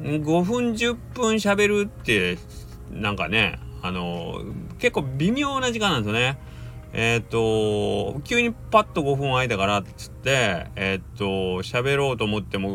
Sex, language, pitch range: male, Japanese, 90-130 Hz